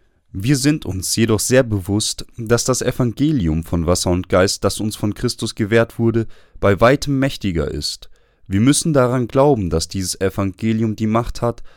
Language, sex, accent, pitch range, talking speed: German, male, German, 95-125 Hz, 170 wpm